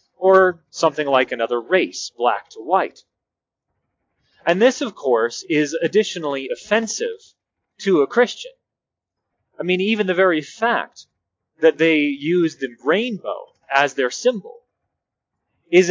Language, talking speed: English, 125 wpm